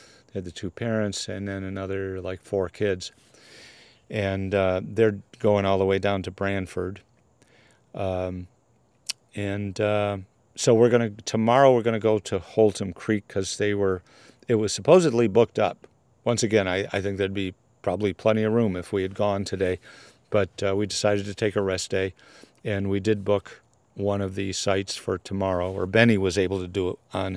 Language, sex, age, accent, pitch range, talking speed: English, male, 50-69, American, 95-110 Hz, 185 wpm